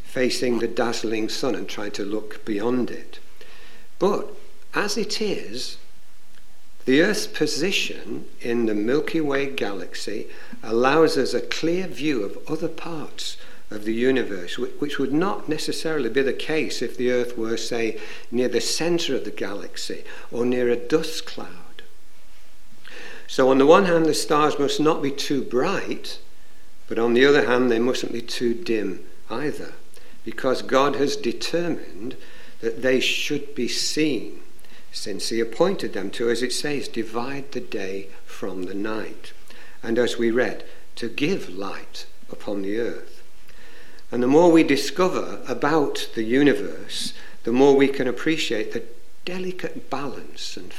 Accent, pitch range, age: British, 115-150 Hz, 60-79